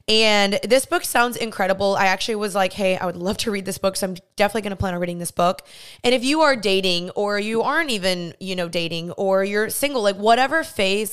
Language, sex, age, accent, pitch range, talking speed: English, female, 20-39, American, 190-225 Hz, 245 wpm